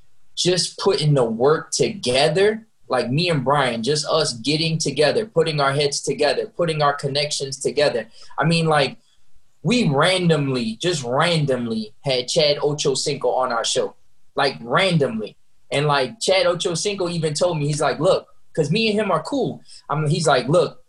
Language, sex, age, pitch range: English, male, 20-39, 145-185 Hz